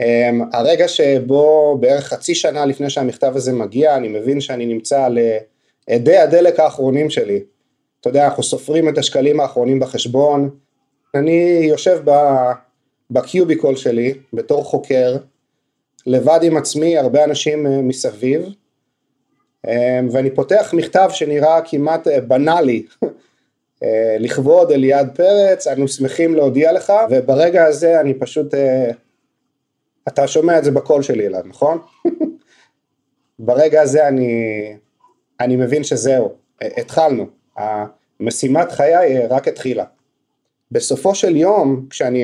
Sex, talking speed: male, 110 wpm